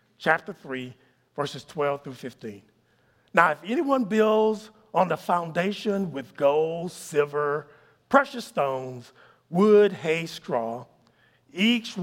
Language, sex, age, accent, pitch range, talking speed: English, male, 50-69, American, 150-205 Hz, 110 wpm